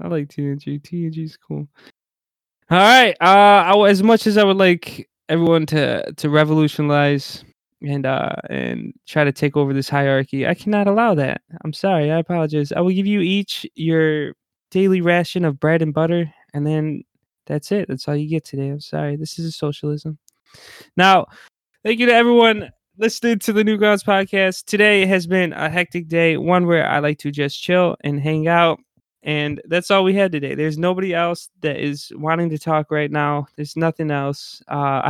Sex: male